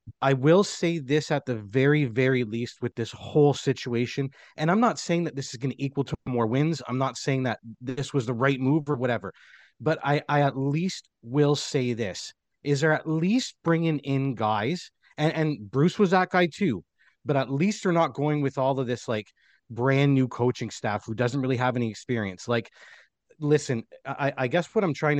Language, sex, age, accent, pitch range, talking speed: English, male, 30-49, American, 125-155 Hz, 210 wpm